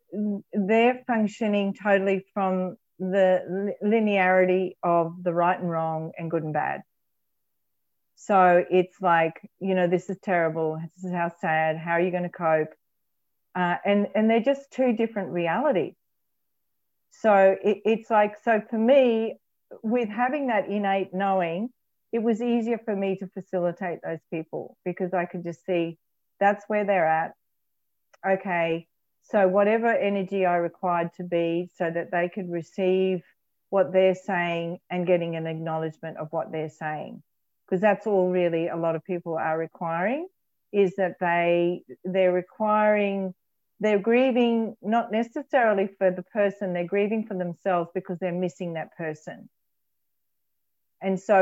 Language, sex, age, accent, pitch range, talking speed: English, female, 40-59, Australian, 170-205 Hz, 150 wpm